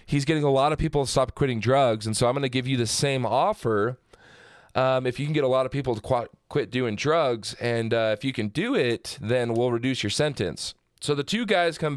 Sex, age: male, 20-39